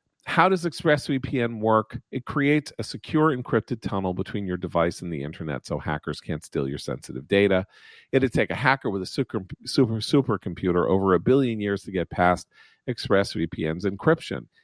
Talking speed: 170 wpm